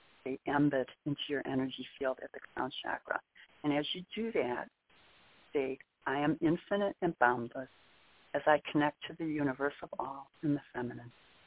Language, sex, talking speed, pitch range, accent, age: English, female, 165 wpm, 135-155 Hz, American, 60-79